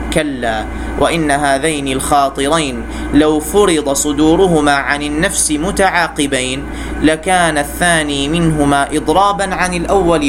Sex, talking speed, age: male, 95 wpm, 30-49